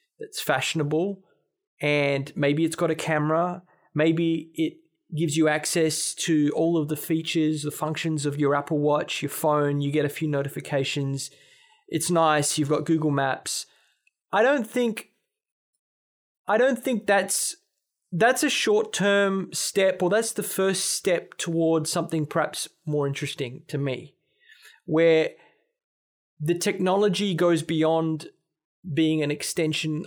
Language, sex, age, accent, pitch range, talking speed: English, male, 20-39, Australian, 145-185 Hz, 135 wpm